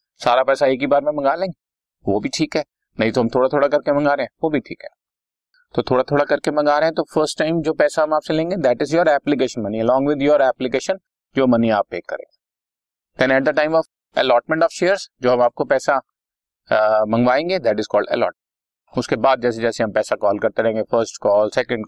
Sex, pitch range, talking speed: male, 105-150 Hz, 230 wpm